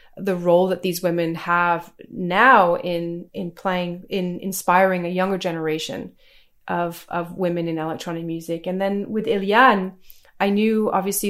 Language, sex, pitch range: English, female, 175-205 Hz